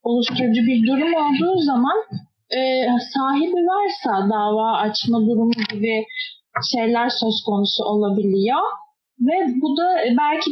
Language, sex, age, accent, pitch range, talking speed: Turkish, female, 30-49, native, 230-285 Hz, 110 wpm